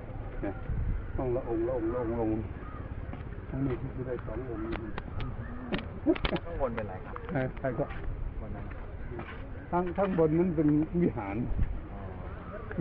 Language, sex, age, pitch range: Thai, male, 60-79, 95-145 Hz